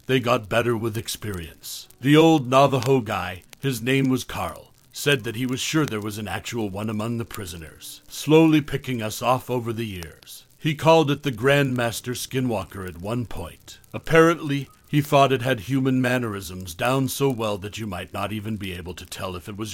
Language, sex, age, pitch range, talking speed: English, male, 60-79, 105-135 Hz, 195 wpm